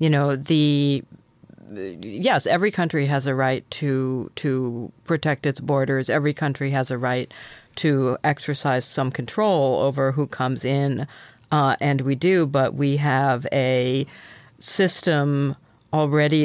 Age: 40-59